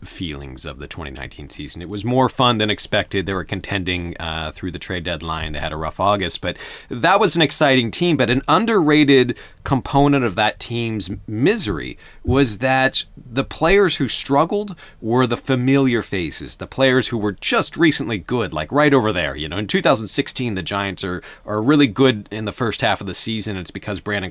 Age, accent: 30-49, American